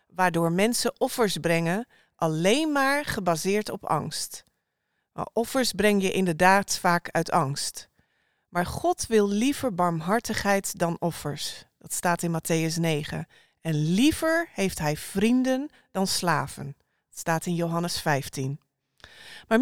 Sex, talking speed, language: female, 125 wpm, Dutch